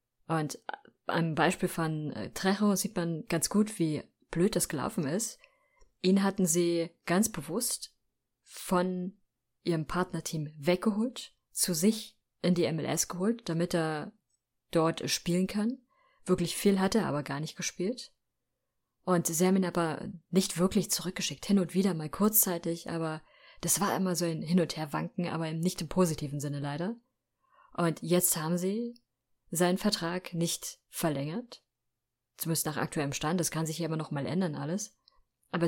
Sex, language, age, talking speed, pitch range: female, German, 20-39, 155 wpm, 160-190 Hz